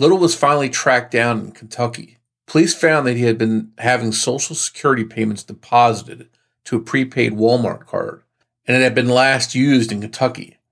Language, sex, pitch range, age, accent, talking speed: English, male, 115-135 Hz, 40-59, American, 175 wpm